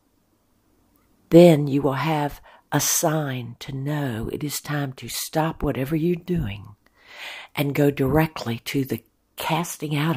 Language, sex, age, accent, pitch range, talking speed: English, female, 60-79, American, 130-170 Hz, 135 wpm